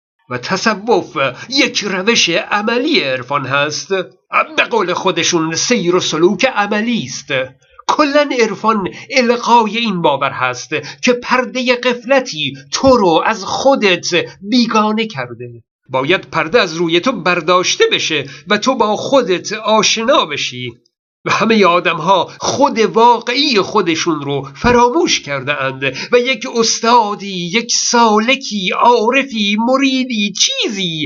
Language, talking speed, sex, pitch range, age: Persian, 120 wpm, male, 170-235 Hz, 50-69